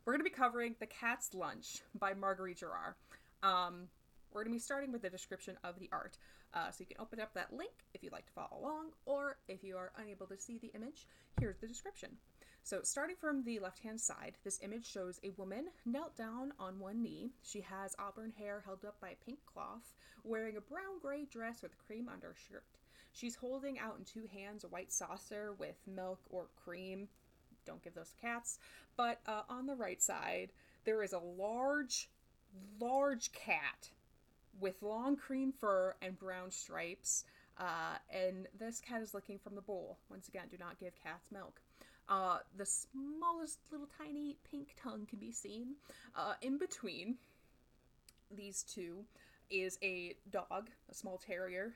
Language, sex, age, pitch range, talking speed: English, female, 20-39, 190-250 Hz, 185 wpm